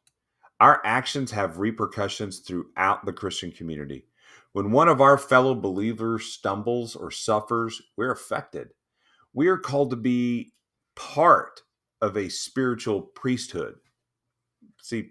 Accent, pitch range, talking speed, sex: American, 95-130 Hz, 120 wpm, male